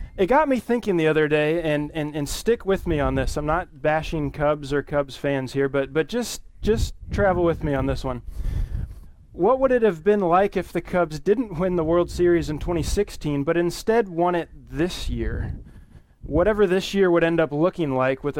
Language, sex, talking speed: English, male, 210 wpm